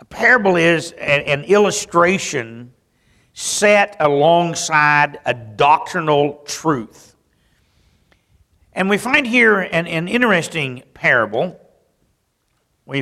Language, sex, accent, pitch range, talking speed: English, male, American, 130-185 Hz, 90 wpm